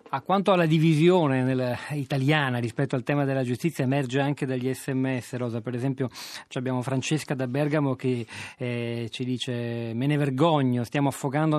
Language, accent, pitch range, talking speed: Italian, native, 125-145 Hz, 155 wpm